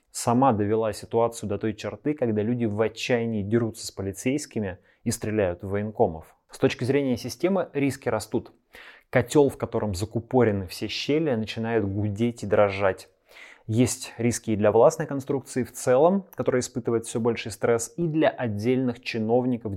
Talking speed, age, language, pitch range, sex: 150 wpm, 20-39, Russian, 105-125 Hz, male